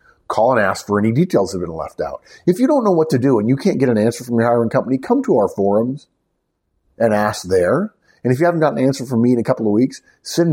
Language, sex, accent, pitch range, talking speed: English, male, American, 105-155 Hz, 285 wpm